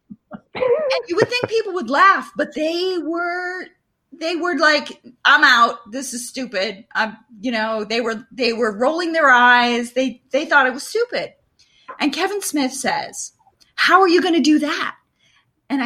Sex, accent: female, American